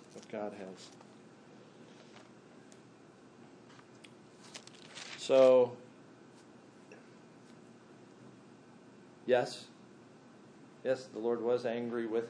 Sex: male